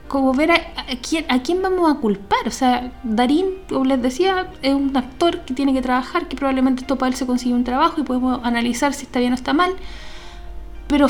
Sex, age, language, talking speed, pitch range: female, 20-39, Spanish, 230 wpm, 230-290 Hz